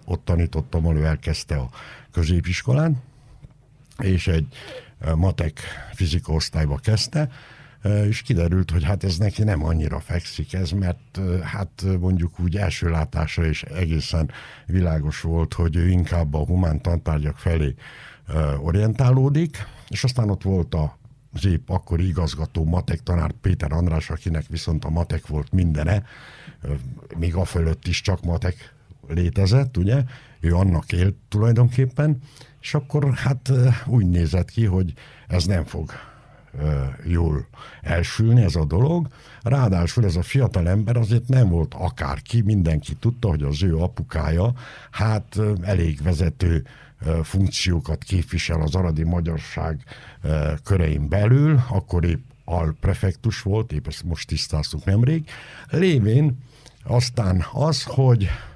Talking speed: 130 wpm